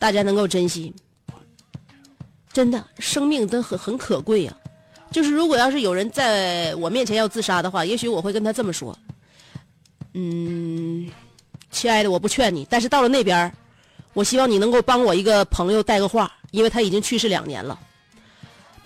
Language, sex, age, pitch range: Chinese, female, 30-49, 180-255 Hz